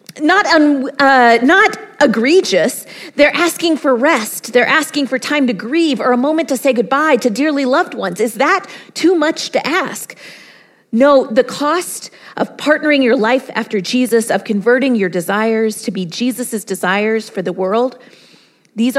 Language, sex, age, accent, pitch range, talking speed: English, female, 40-59, American, 225-275 Hz, 165 wpm